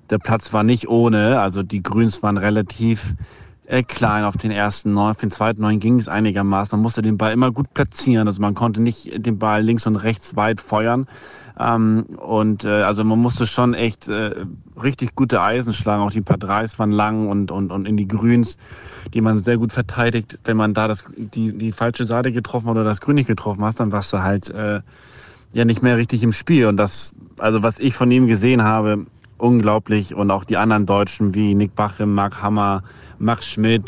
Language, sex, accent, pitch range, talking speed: German, male, German, 105-115 Hz, 215 wpm